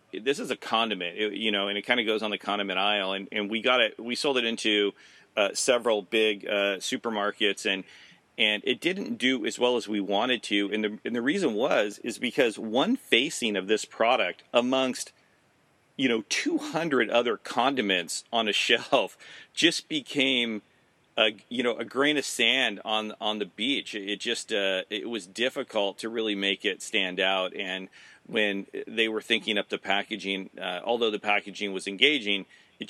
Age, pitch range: 40-59, 100-130 Hz